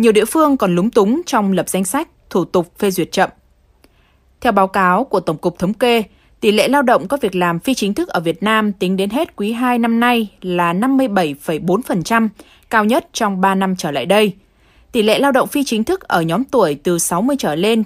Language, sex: Vietnamese, female